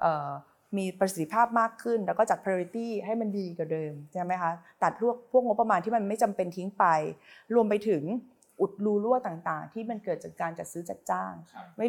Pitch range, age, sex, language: 175-225 Hz, 30-49, female, Thai